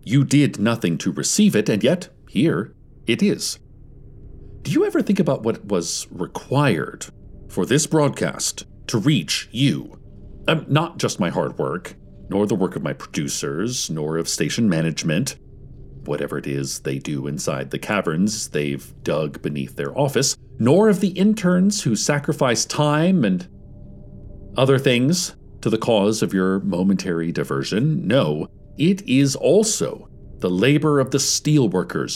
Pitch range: 105-165 Hz